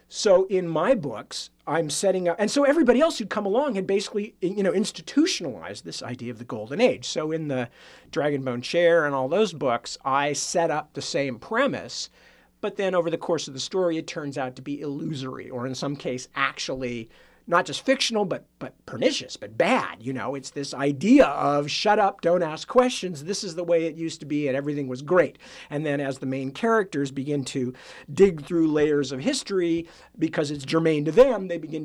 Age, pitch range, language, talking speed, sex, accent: 50-69, 135-185 Hz, English, 205 wpm, male, American